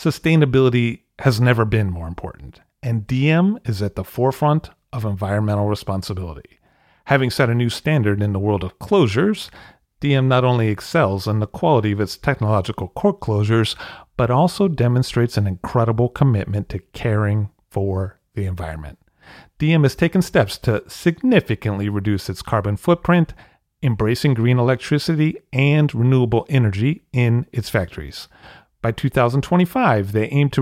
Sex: male